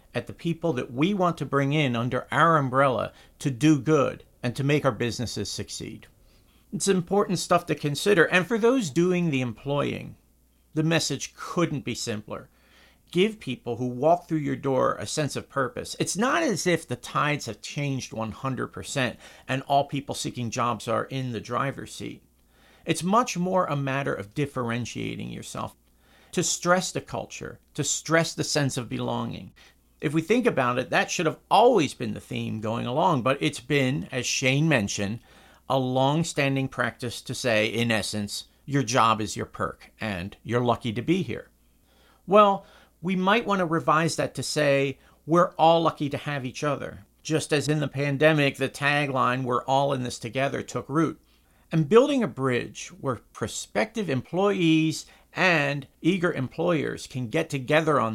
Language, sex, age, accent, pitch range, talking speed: English, male, 50-69, American, 120-160 Hz, 170 wpm